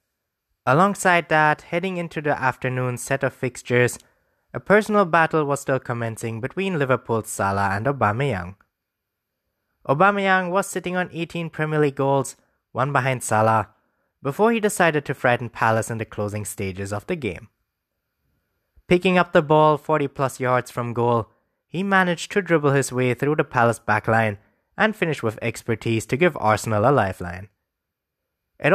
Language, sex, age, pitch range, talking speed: English, male, 20-39, 110-160 Hz, 150 wpm